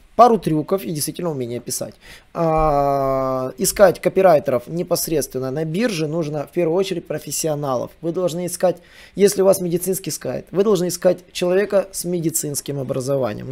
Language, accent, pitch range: Russian, native, 145-190 Hz